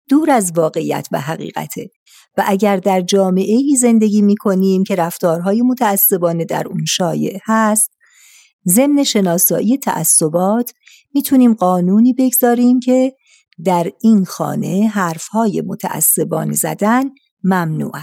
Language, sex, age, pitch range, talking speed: Persian, female, 50-69, 180-225 Hz, 110 wpm